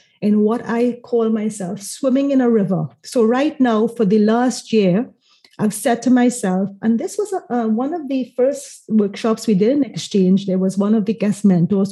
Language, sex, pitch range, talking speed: English, female, 200-250 Hz, 195 wpm